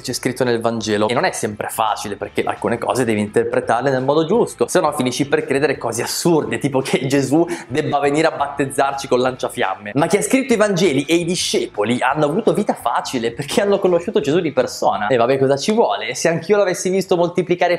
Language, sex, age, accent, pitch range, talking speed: Italian, male, 20-39, native, 120-185 Hz, 205 wpm